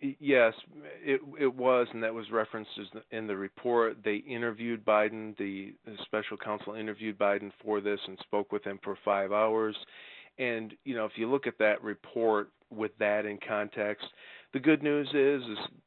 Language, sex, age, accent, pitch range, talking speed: English, male, 40-59, American, 105-130 Hz, 180 wpm